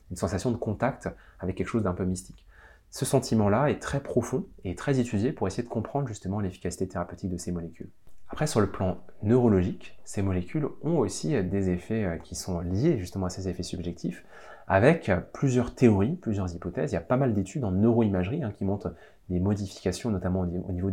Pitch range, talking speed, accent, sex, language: 90-110 Hz, 195 wpm, French, male, French